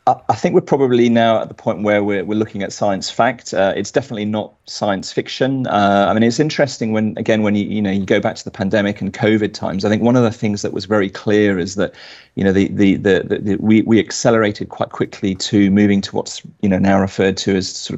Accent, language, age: British, English, 30-49